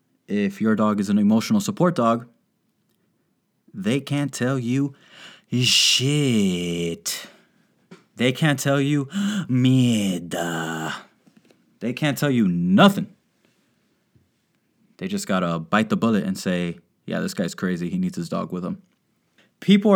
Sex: male